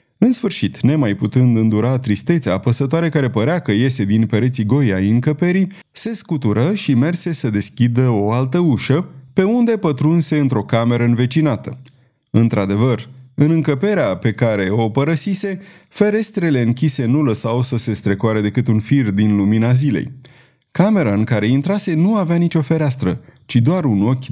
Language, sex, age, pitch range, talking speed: Romanian, male, 30-49, 110-155 Hz, 155 wpm